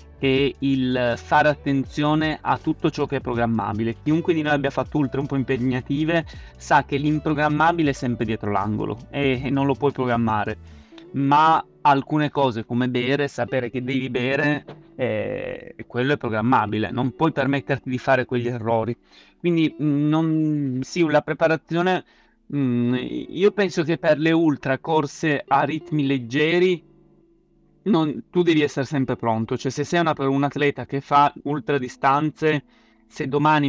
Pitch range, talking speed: 125-150 Hz, 150 wpm